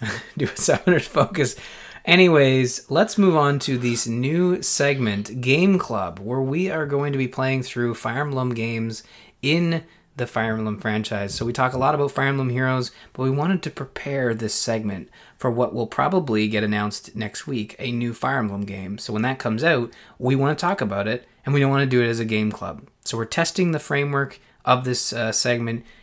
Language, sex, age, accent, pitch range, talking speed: English, male, 20-39, American, 110-145 Hz, 205 wpm